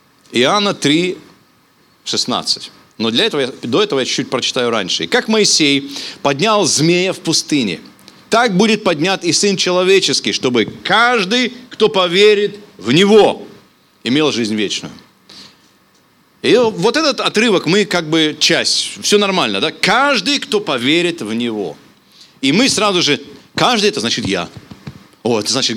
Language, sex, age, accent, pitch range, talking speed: Russian, male, 40-59, native, 145-215 Hz, 135 wpm